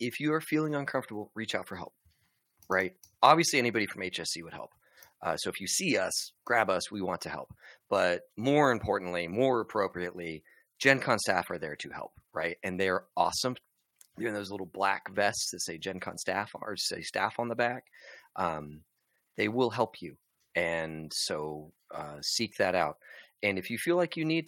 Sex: male